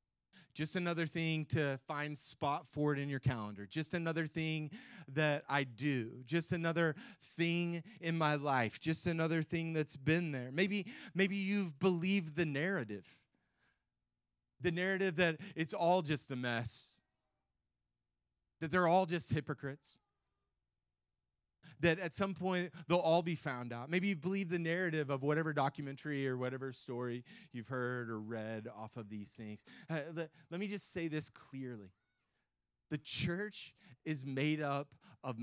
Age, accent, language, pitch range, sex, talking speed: 30-49, American, English, 120-170 Hz, male, 150 wpm